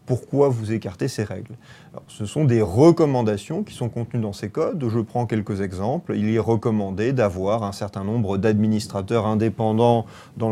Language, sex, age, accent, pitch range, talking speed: French, male, 40-59, French, 110-135 Hz, 170 wpm